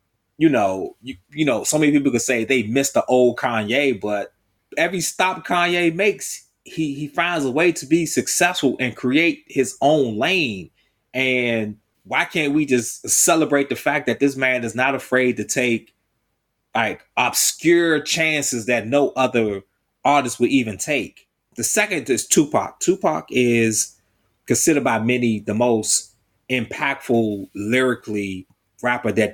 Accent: American